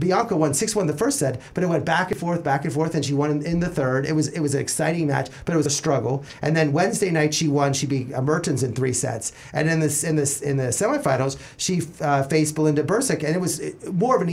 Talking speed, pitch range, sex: 270 wpm, 145-190 Hz, male